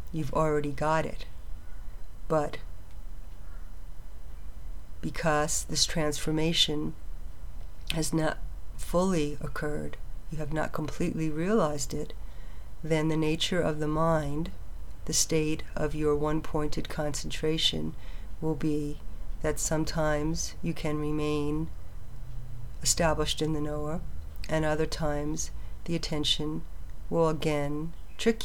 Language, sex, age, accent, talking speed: English, female, 50-69, American, 105 wpm